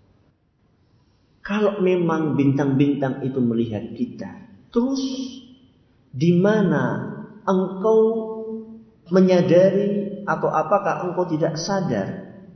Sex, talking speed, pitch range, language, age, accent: male, 75 wpm, 140-190 Hz, Indonesian, 50-69, native